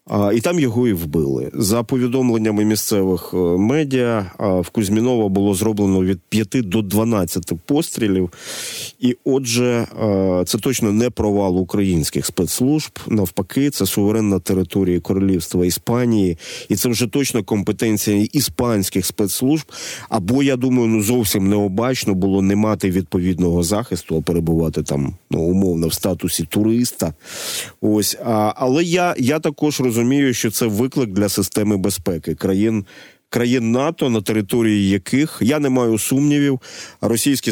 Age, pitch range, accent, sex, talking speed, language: 30-49, 95-125 Hz, native, male, 135 wpm, Ukrainian